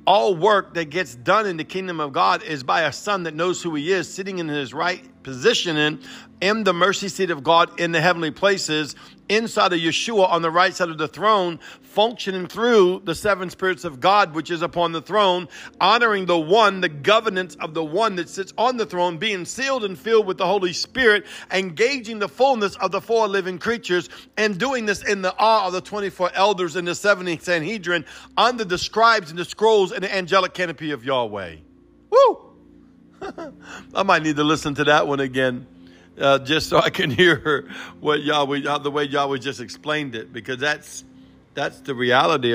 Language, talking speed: English, 200 wpm